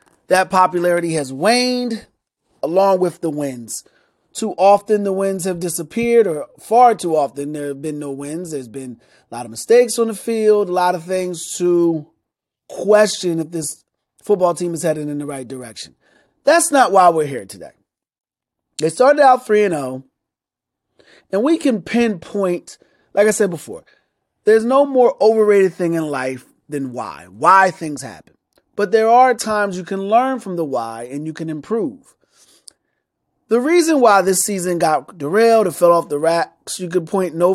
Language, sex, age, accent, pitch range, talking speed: English, male, 30-49, American, 150-200 Hz, 175 wpm